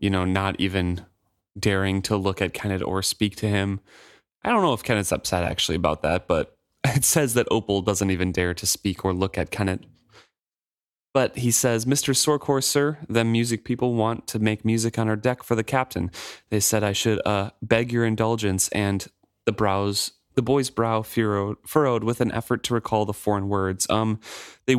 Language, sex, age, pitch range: English, male, 20-39, 95-120 Hz